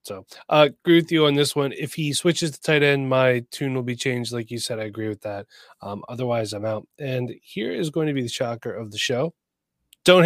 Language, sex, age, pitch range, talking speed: English, male, 20-39, 120-155 Hz, 250 wpm